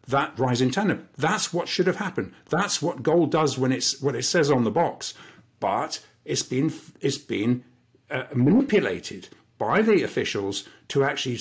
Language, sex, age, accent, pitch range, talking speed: English, male, 50-69, British, 125-175 Hz, 170 wpm